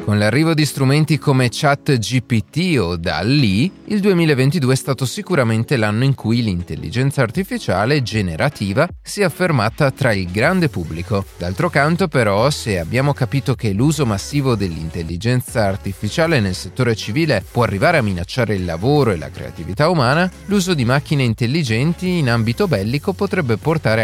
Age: 30-49